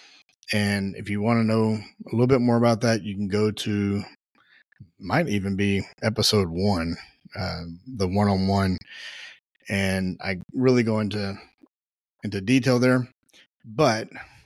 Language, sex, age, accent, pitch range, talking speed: English, male, 30-49, American, 100-125 Hz, 135 wpm